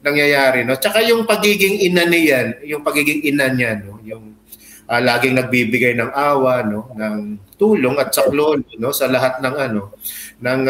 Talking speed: 165 wpm